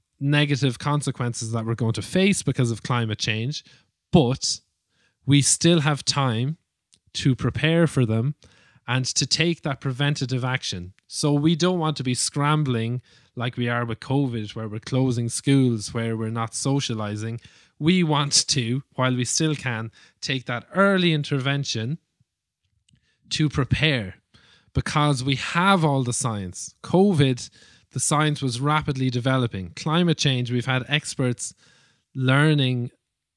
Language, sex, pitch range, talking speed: English, male, 115-145 Hz, 140 wpm